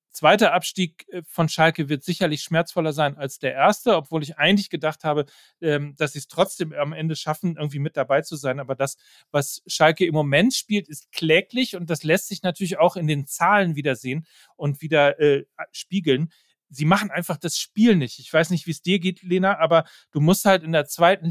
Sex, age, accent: male, 40-59, German